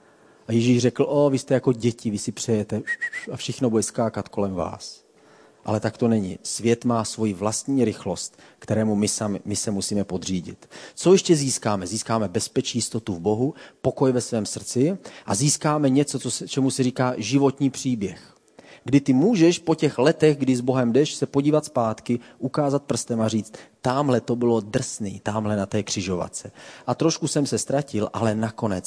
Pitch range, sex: 110-140 Hz, male